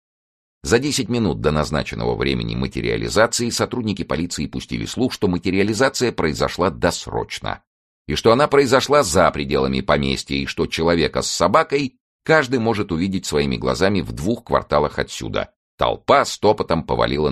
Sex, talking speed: male, 135 wpm